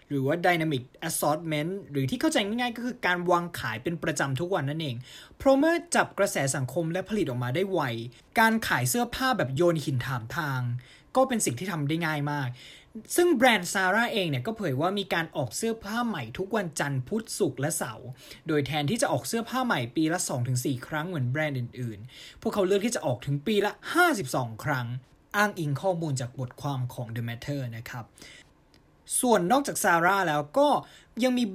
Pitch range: 140-205 Hz